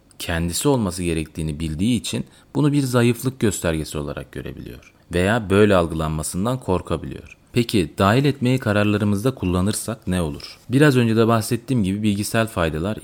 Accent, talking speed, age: native, 135 wpm, 30-49